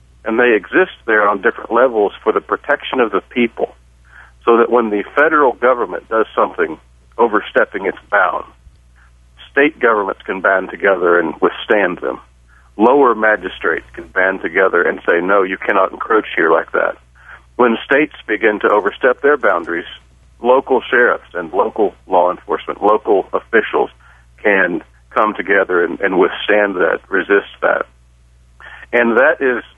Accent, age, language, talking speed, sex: American, 50-69, English, 145 wpm, male